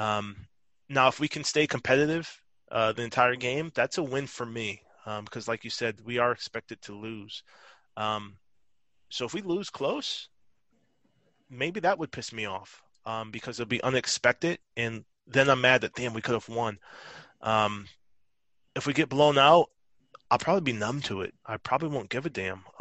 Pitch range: 105-125 Hz